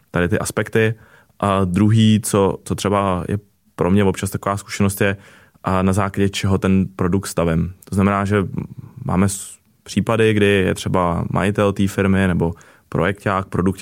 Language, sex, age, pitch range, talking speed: Czech, male, 20-39, 95-105 Hz, 150 wpm